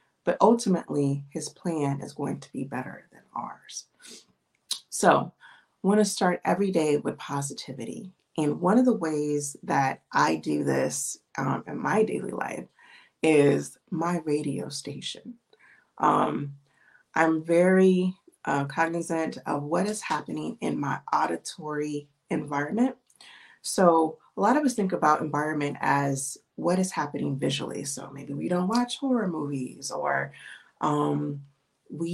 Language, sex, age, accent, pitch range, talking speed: English, female, 30-49, American, 145-185 Hz, 140 wpm